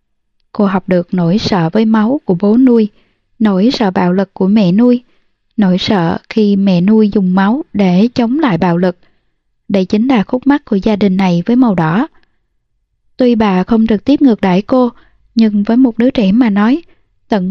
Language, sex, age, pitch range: Vietnamese, female, 20-39, 185-240 Hz